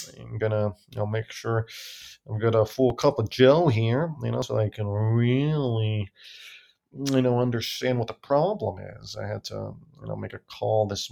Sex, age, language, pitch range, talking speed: male, 20-39, English, 105-130 Hz, 200 wpm